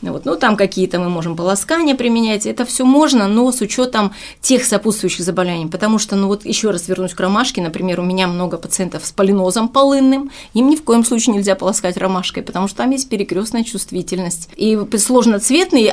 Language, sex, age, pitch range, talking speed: Russian, female, 30-49, 190-245 Hz, 190 wpm